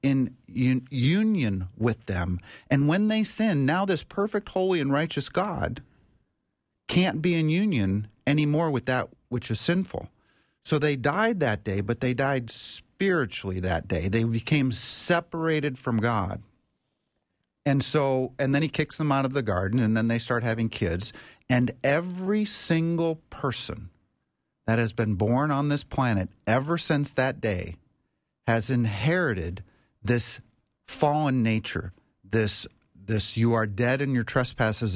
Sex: male